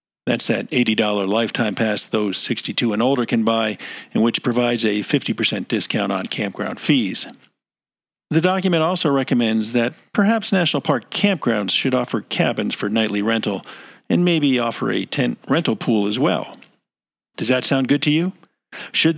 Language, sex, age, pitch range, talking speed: English, male, 50-69, 115-155 Hz, 160 wpm